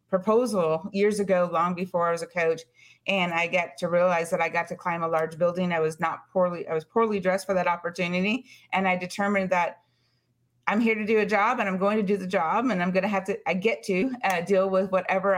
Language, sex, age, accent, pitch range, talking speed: English, female, 30-49, American, 170-195 Hz, 245 wpm